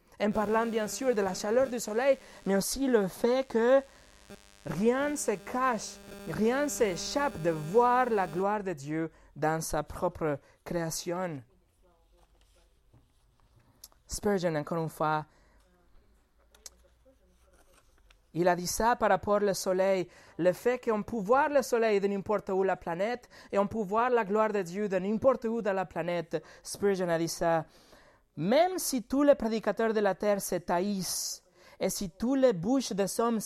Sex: male